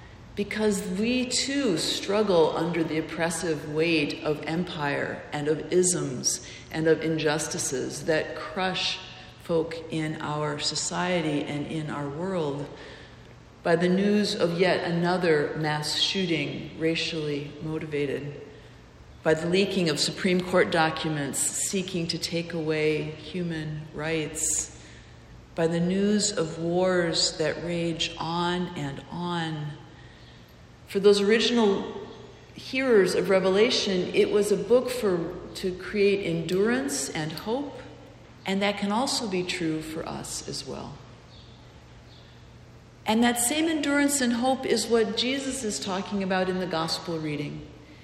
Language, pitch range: English, 155-200 Hz